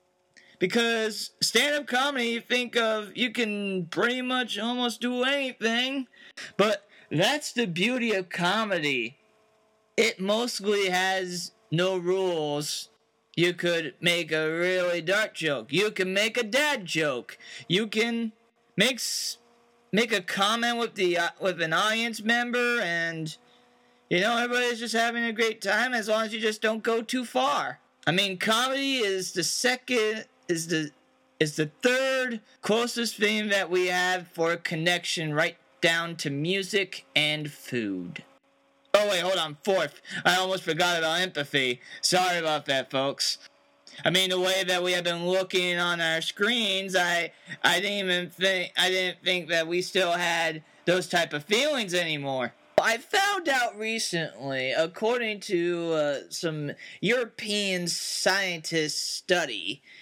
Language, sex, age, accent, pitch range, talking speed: English, male, 30-49, American, 170-230 Hz, 145 wpm